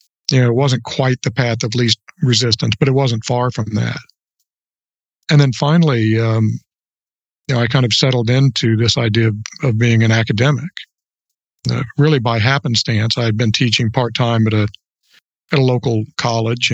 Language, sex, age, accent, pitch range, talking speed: English, male, 50-69, American, 115-135 Hz, 180 wpm